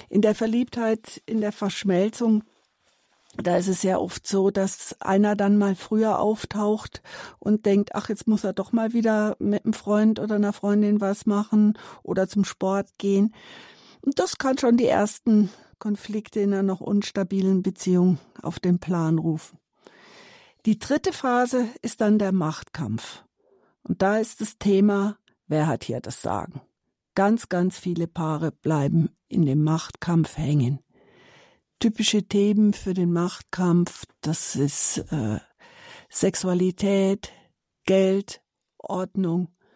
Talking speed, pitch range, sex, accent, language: 140 wpm, 175-210 Hz, female, German, German